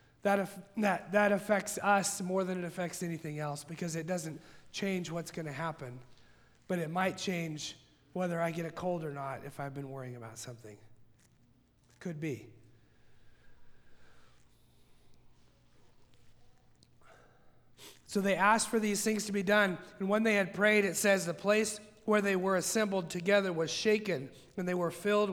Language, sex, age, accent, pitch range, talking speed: English, male, 40-59, American, 145-195 Hz, 155 wpm